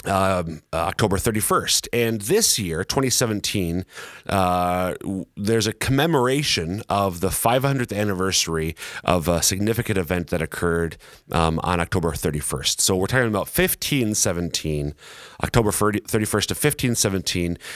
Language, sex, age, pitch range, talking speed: English, male, 30-49, 90-115 Hz, 120 wpm